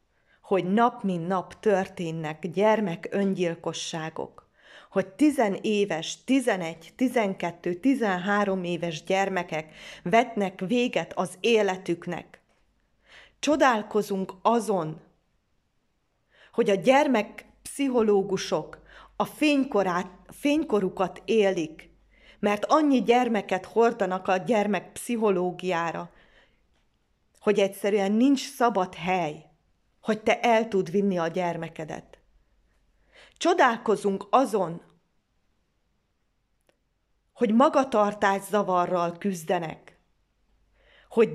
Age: 30-49